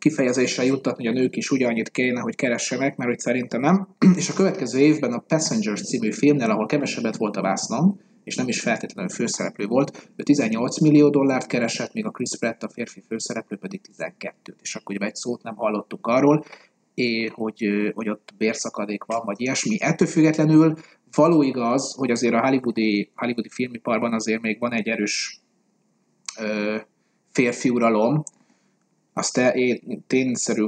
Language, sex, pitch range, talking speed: Hungarian, male, 115-155 Hz, 160 wpm